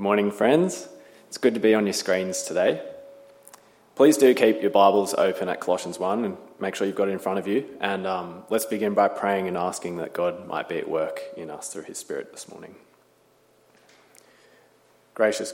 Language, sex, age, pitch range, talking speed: English, male, 20-39, 95-115 Hz, 200 wpm